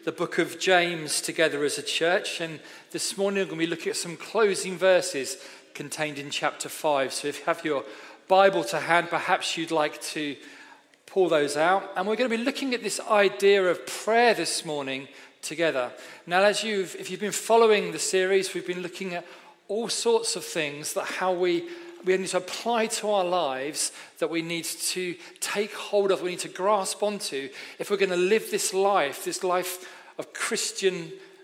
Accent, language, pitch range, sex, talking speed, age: British, English, 165-215 Hz, male, 205 wpm, 40-59